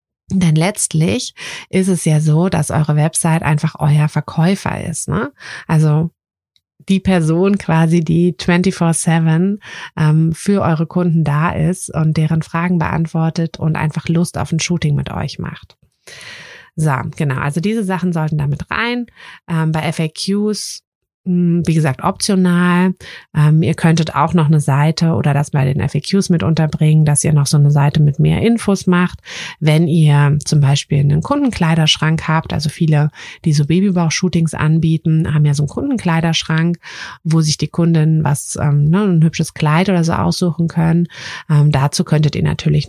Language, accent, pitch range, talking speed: German, German, 150-170 Hz, 160 wpm